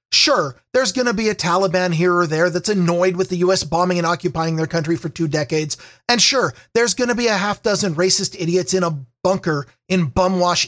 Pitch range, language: 180-235 Hz, English